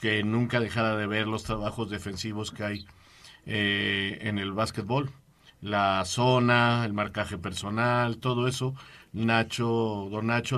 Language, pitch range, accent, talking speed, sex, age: Spanish, 115-145 Hz, Mexican, 135 wpm, male, 50-69